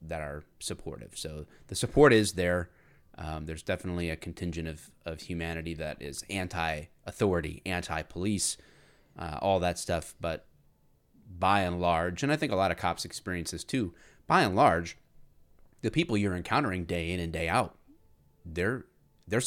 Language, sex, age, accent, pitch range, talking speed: English, male, 30-49, American, 85-105 Hz, 165 wpm